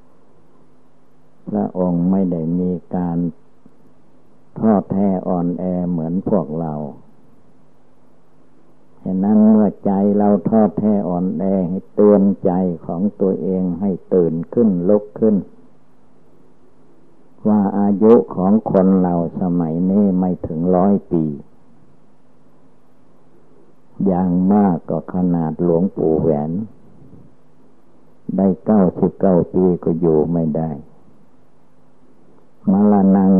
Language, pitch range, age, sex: Thai, 85-95 Hz, 60-79, male